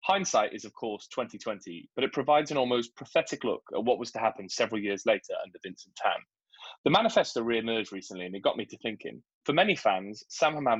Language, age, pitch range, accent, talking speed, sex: English, 20-39, 100-135 Hz, British, 210 wpm, male